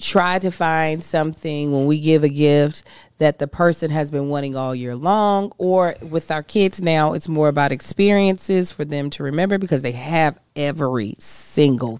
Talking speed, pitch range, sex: 180 wpm, 145-185 Hz, female